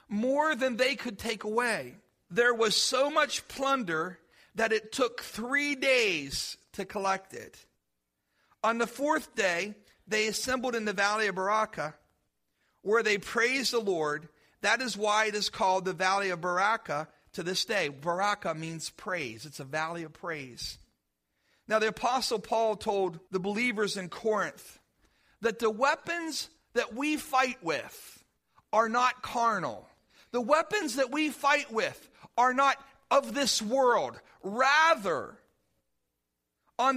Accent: American